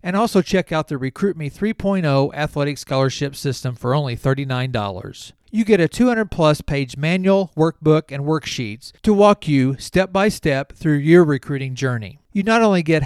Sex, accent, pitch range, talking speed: male, American, 130-180 Hz, 160 wpm